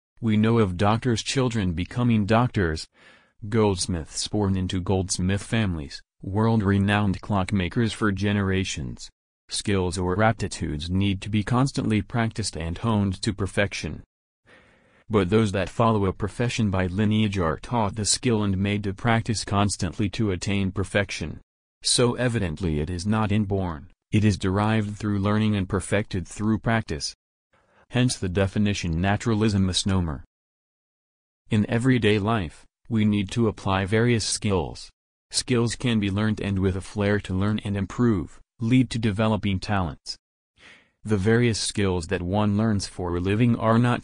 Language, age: English, 40-59